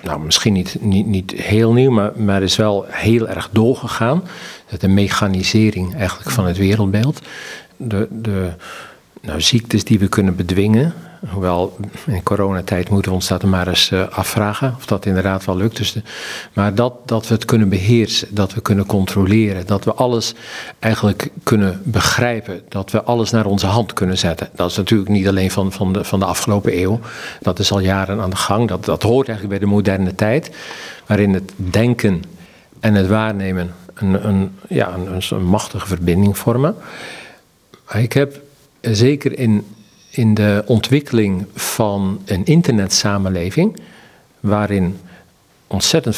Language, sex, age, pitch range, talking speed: Dutch, male, 50-69, 95-115 Hz, 155 wpm